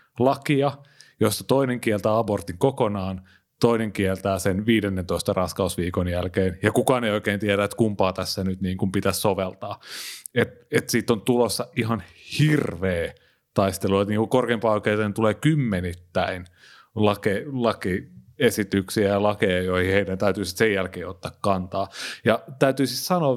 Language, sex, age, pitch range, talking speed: Finnish, male, 30-49, 95-125 Hz, 140 wpm